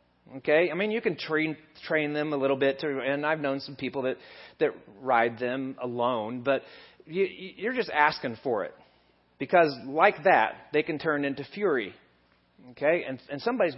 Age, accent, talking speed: 40-59, American, 180 wpm